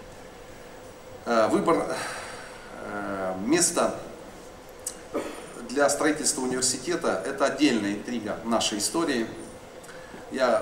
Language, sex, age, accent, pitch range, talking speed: Russian, male, 40-59, native, 115-155 Hz, 70 wpm